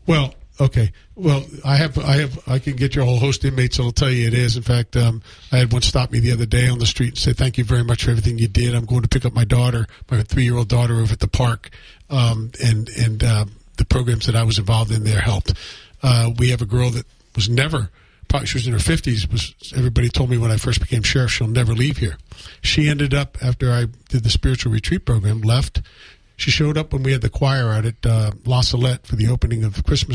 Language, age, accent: English, 50-69, American